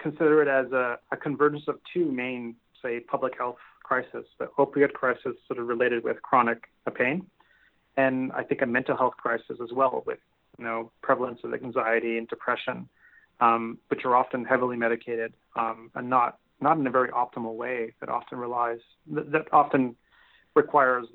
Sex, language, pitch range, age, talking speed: male, English, 115-130 Hz, 30-49, 175 wpm